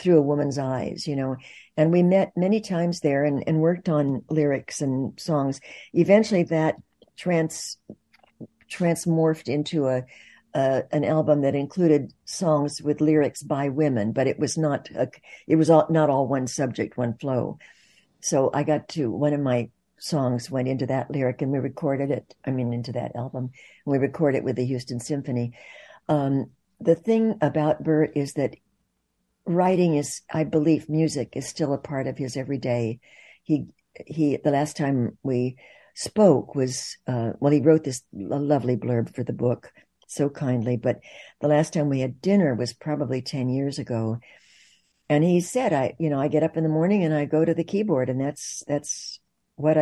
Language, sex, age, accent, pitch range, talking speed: English, female, 60-79, American, 130-160 Hz, 180 wpm